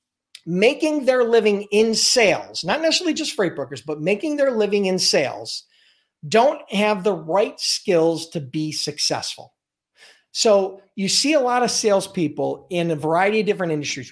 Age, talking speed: 40-59, 155 wpm